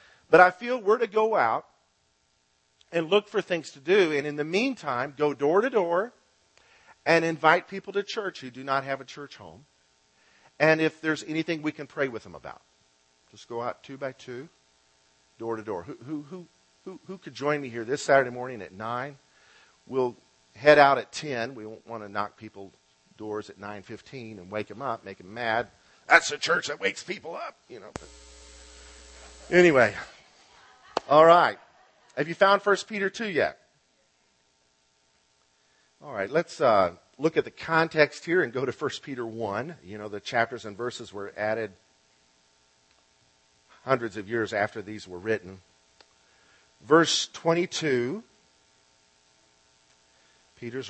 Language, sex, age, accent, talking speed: English, male, 50-69, American, 165 wpm